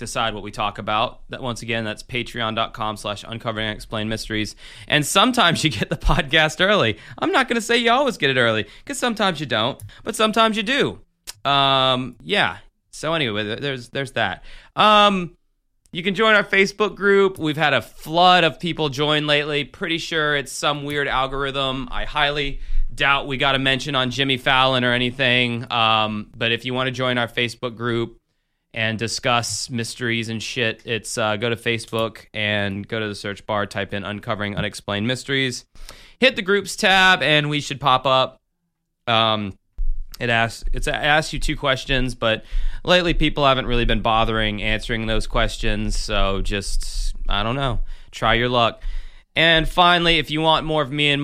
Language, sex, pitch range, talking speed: English, male, 110-150 Hz, 180 wpm